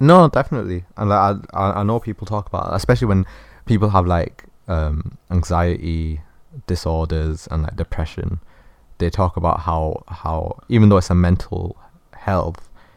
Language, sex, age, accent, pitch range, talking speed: English, male, 20-39, British, 80-95 Hz, 150 wpm